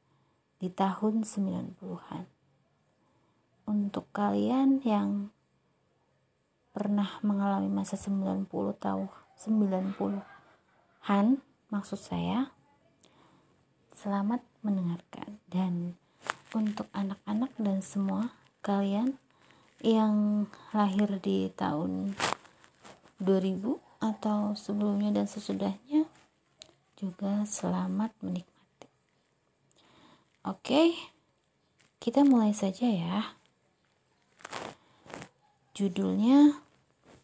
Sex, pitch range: female, 185-220 Hz